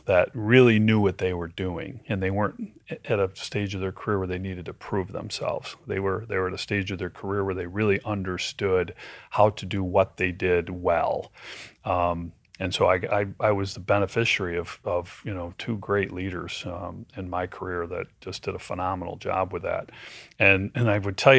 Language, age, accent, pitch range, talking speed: English, 30-49, American, 95-110 Hz, 215 wpm